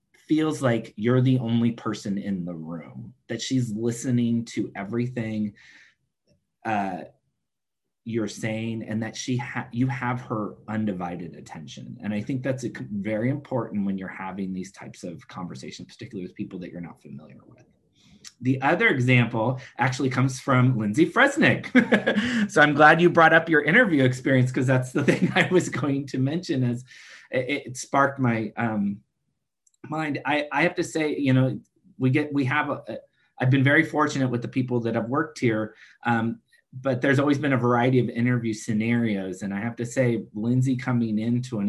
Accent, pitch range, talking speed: American, 110-140 Hz, 180 wpm